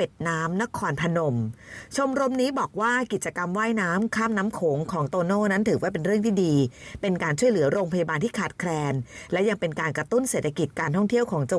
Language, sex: Thai, female